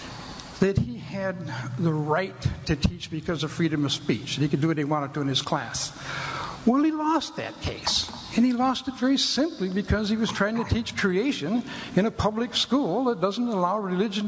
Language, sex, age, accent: Filipino, male, 60-79, American